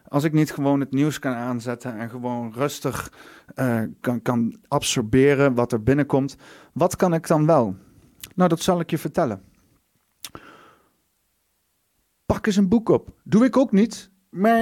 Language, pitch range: Dutch, 125-150 Hz